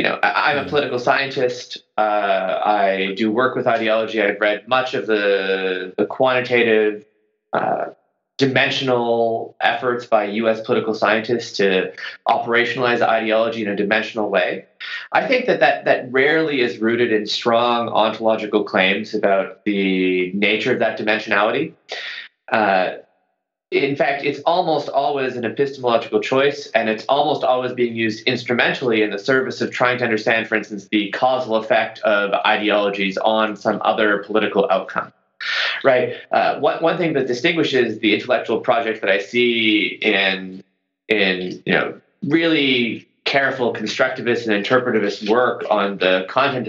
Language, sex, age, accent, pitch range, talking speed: English, male, 20-39, American, 105-125 Hz, 145 wpm